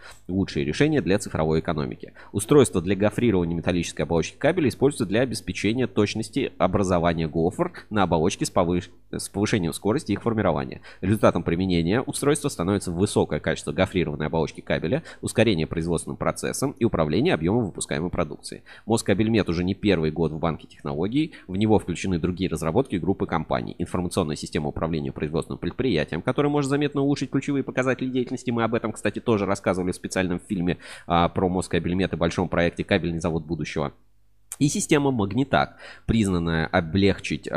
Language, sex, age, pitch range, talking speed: Russian, male, 20-39, 85-110 Hz, 150 wpm